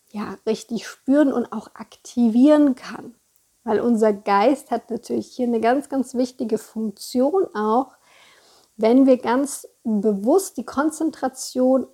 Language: German